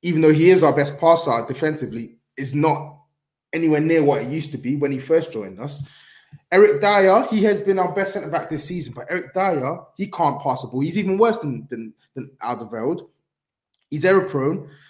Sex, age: male, 20-39